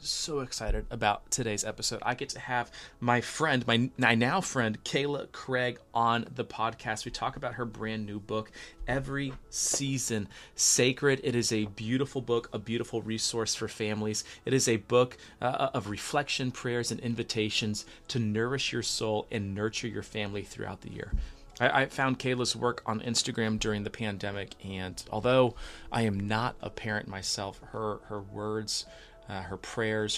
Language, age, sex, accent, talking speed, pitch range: English, 30-49, male, American, 170 wpm, 105-125 Hz